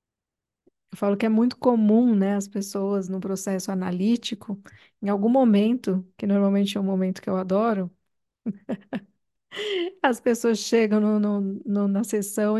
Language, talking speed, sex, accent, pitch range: Portuguese, 135 wpm, female, Brazilian, 200-230 Hz